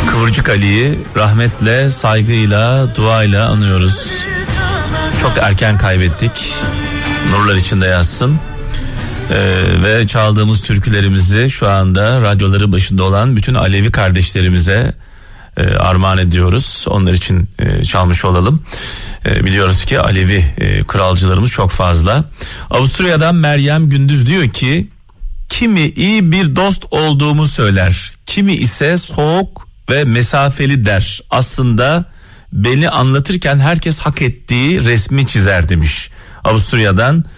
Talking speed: 110 wpm